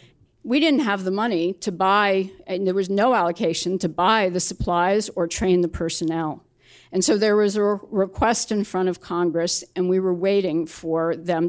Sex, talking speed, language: female, 190 wpm, English